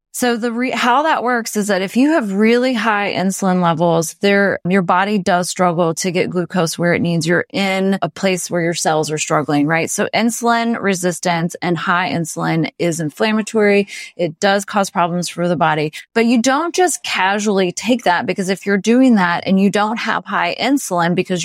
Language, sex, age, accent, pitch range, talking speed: English, female, 30-49, American, 175-235 Hz, 195 wpm